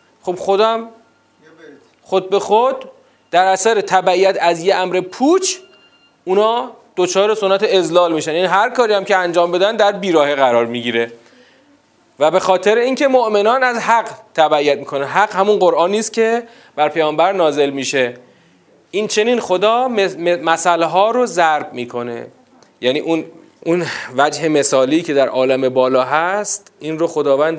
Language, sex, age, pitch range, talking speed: Persian, male, 30-49, 140-210 Hz, 145 wpm